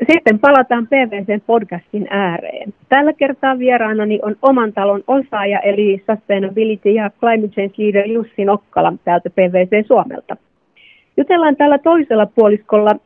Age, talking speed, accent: 30-49, 120 wpm, native